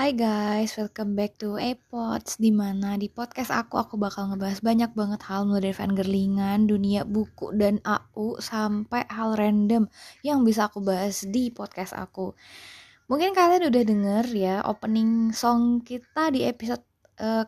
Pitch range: 210-255 Hz